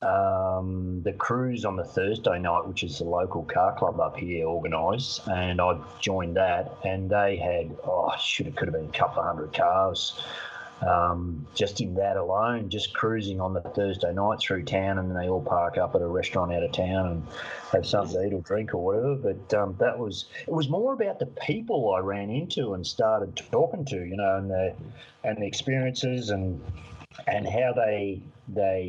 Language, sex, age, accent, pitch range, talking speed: English, male, 30-49, Australian, 95-120 Hz, 200 wpm